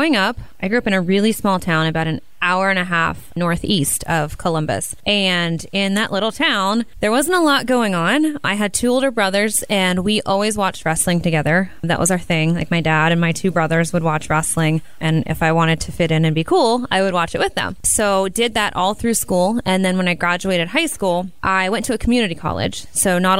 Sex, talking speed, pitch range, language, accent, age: female, 235 wpm, 170-220 Hz, English, American, 20-39